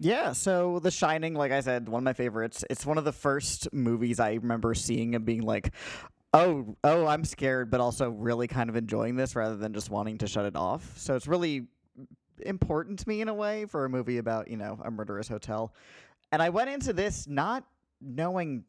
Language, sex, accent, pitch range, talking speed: English, male, American, 115-155 Hz, 215 wpm